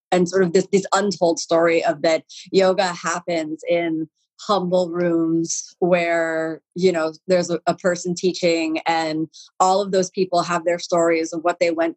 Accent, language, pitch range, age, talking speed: American, English, 165-190 Hz, 30-49, 165 wpm